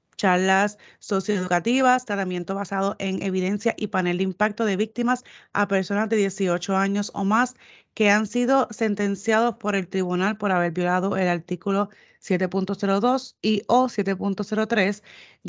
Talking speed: 135 wpm